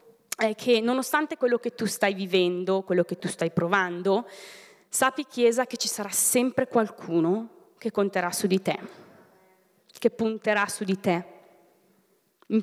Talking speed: 145 wpm